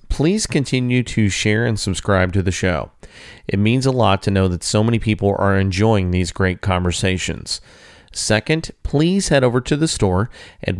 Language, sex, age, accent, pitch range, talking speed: English, male, 40-59, American, 95-120 Hz, 180 wpm